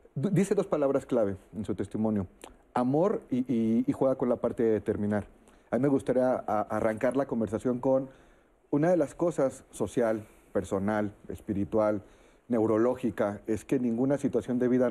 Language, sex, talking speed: Spanish, male, 160 wpm